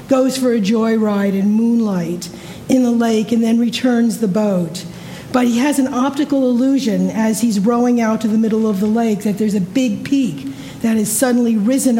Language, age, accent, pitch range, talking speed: English, 50-69, American, 210-250 Hz, 195 wpm